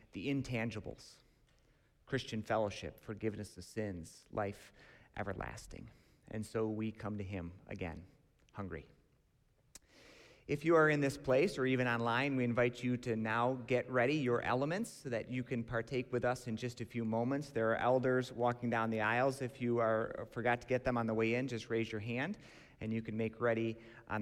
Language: English